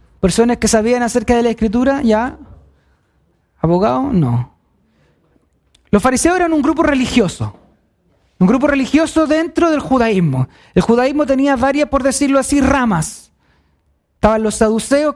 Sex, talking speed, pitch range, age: male, 130 wpm, 205-270 Hz, 30-49